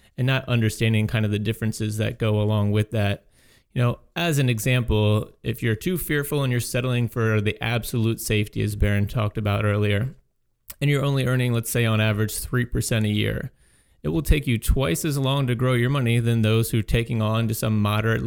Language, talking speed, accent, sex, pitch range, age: English, 210 wpm, American, male, 110-130 Hz, 30-49